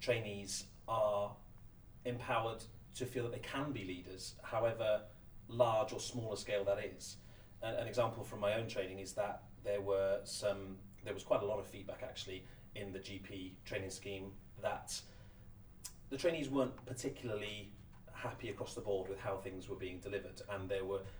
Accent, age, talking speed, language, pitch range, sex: British, 30-49, 165 wpm, English, 100-120 Hz, male